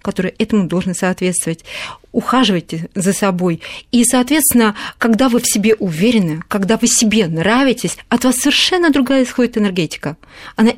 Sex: female